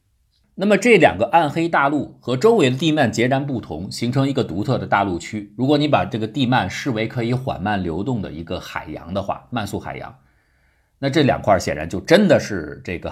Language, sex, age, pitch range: Chinese, male, 50-69, 85-135 Hz